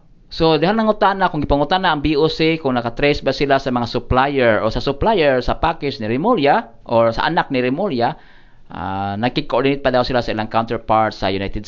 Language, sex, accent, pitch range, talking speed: Filipino, male, native, 115-145 Hz, 200 wpm